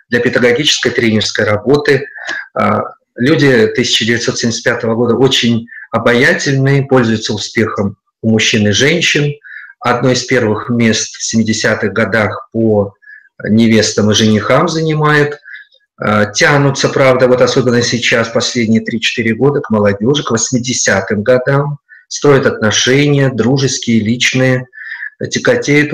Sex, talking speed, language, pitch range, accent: male, 105 wpm, Russian, 110-140 Hz, native